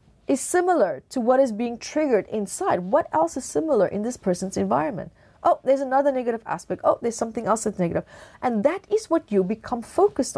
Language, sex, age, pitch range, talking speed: English, female, 30-49, 200-295 Hz, 195 wpm